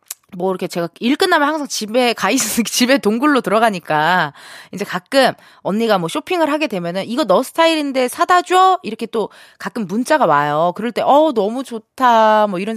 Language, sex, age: Korean, female, 20-39